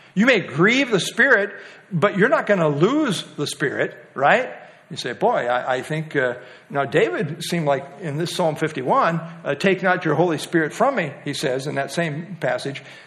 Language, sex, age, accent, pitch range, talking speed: English, male, 60-79, American, 155-215 Hz, 195 wpm